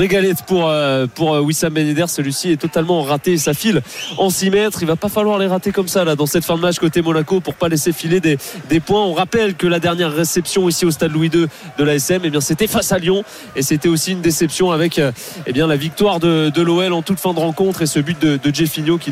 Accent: French